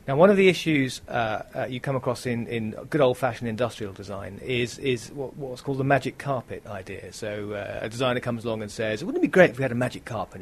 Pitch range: 110-135 Hz